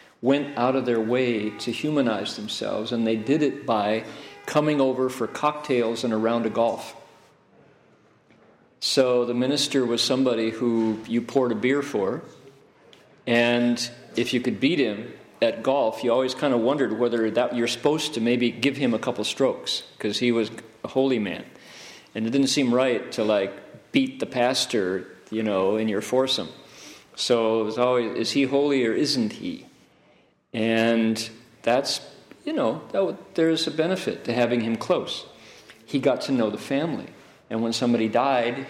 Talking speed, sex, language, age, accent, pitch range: 170 wpm, male, English, 50-69, American, 115-135 Hz